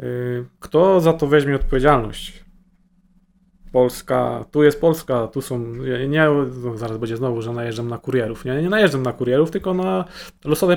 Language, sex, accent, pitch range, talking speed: Polish, male, native, 130-165 Hz, 145 wpm